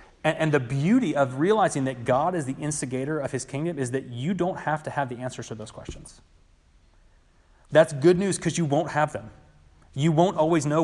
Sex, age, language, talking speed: male, 30-49, English, 205 wpm